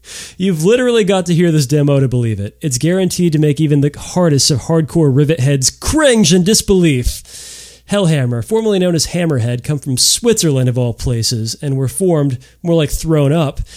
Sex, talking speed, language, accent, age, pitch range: male, 185 wpm, English, American, 30-49, 125-175 Hz